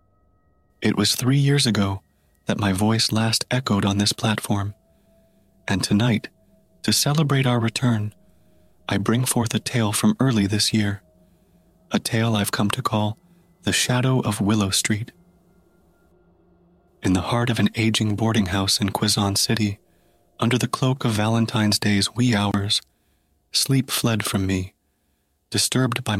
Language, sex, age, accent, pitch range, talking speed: English, male, 30-49, American, 95-115 Hz, 145 wpm